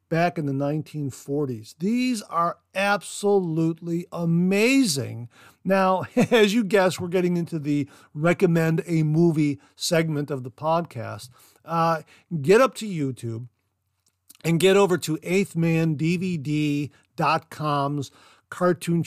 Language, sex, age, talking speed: English, male, 50-69, 105 wpm